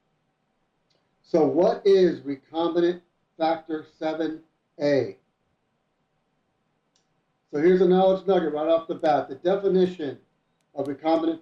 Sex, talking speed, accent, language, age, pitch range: male, 100 wpm, American, English, 60-79, 150-175 Hz